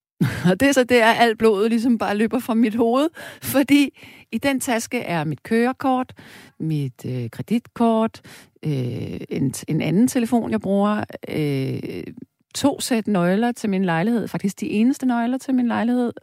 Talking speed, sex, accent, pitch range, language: 165 wpm, female, native, 165-235 Hz, Danish